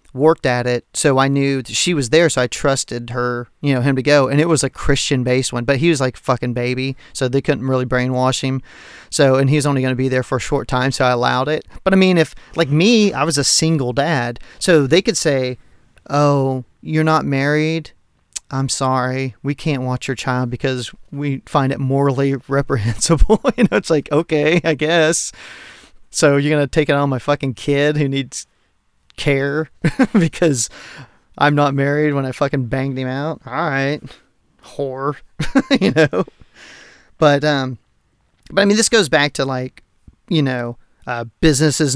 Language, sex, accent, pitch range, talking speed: English, male, American, 125-150 Hz, 190 wpm